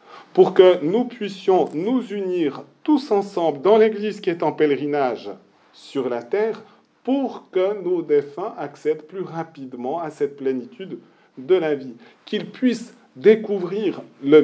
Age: 40-59